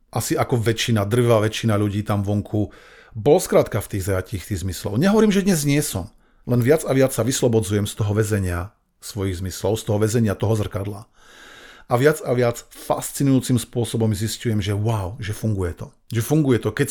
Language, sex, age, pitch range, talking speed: Slovak, male, 40-59, 110-135 Hz, 185 wpm